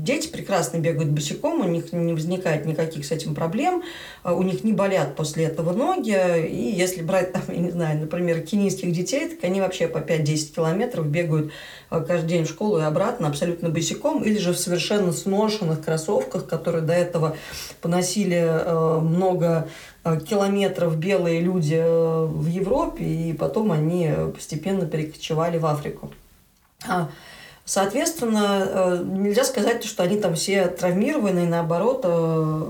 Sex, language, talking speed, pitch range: female, Russian, 140 wpm, 165-190 Hz